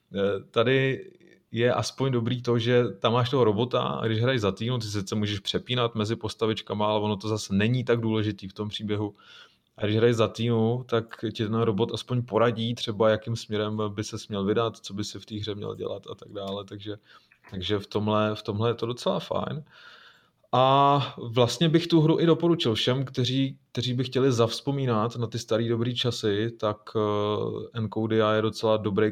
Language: Czech